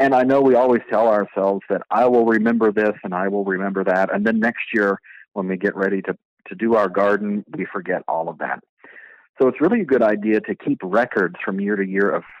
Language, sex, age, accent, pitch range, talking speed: English, male, 40-59, American, 100-125 Hz, 235 wpm